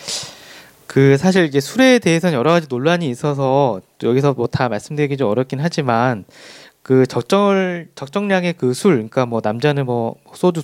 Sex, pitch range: male, 125-160 Hz